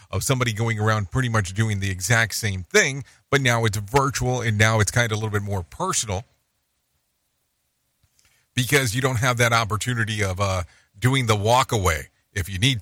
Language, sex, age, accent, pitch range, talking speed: English, male, 40-59, American, 100-130 Hz, 185 wpm